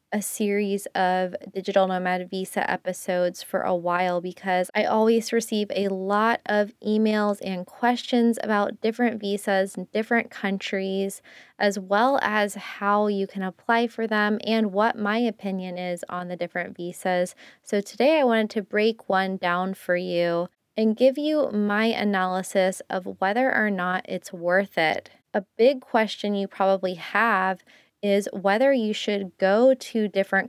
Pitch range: 190-220 Hz